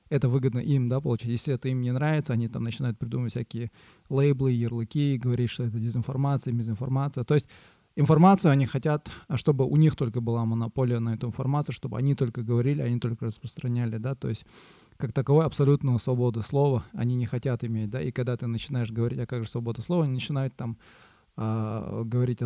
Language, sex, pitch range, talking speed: Russian, male, 115-140 Hz, 185 wpm